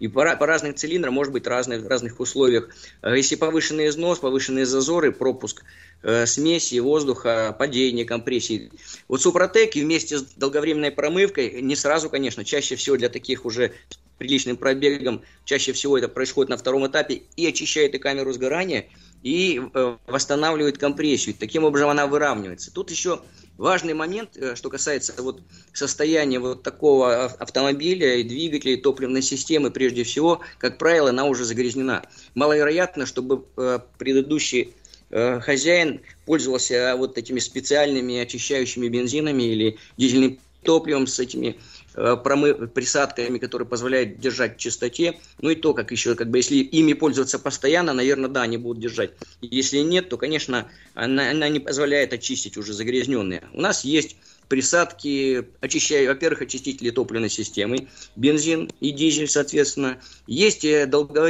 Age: 20-39